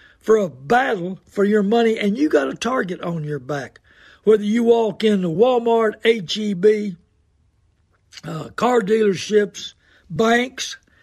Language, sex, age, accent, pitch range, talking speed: English, male, 60-79, American, 160-215 Hz, 135 wpm